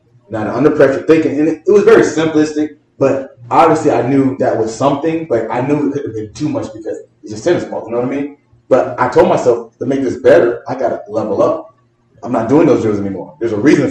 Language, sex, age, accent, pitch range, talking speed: English, male, 20-39, American, 115-140 Hz, 240 wpm